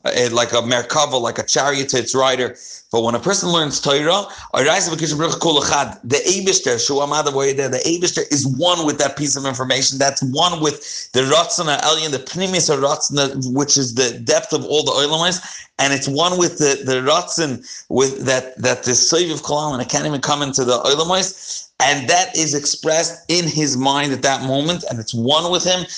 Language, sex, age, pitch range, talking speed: English, male, 40-59, 130-165 Hz, 180 wpm